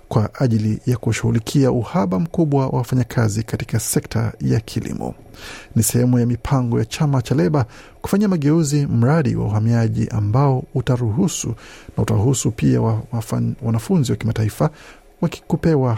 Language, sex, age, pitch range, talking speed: Swahili, male, 50-69, 115-145 Hz, 130 wpm